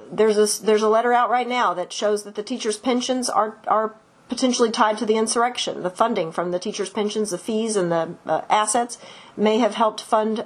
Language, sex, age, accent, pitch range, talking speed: English, female, 40-59, American, 195-240 Hz, 210 wpm